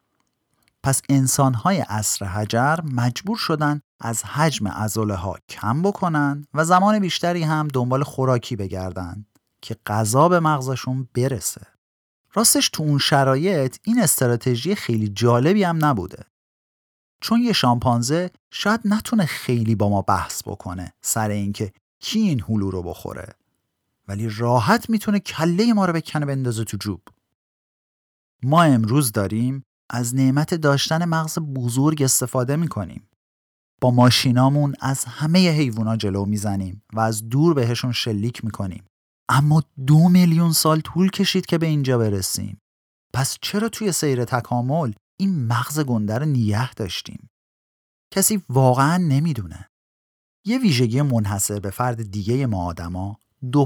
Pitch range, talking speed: 110-155 Hz, 130 wpm